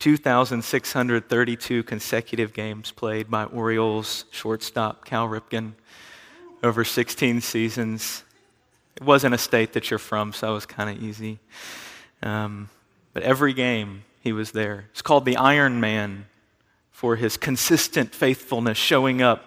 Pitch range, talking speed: 110-135 Hz, 130 wpm